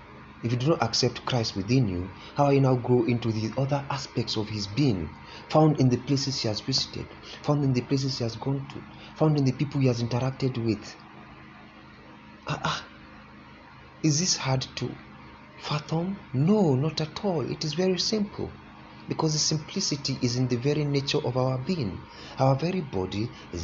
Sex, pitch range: male, 110-155 Hz